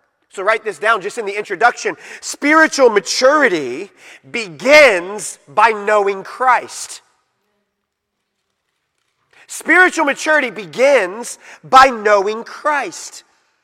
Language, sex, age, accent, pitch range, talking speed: English, male, 40-59, American, 245-315 Hz, 90 wpm